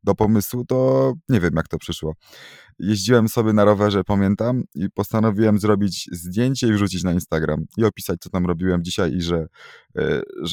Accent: native